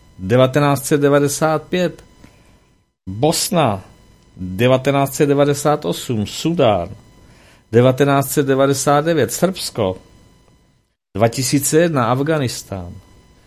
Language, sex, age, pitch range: Czech, male, 50-69, 115-145 Hz